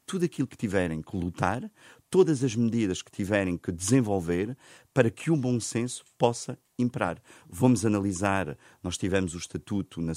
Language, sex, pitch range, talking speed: Portuguese, male, 90-115 Hz, 160 wpm